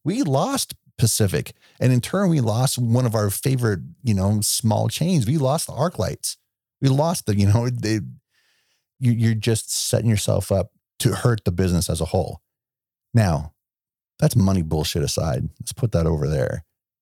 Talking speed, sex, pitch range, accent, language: 170 wpm, male, 95-125 Hz, American, English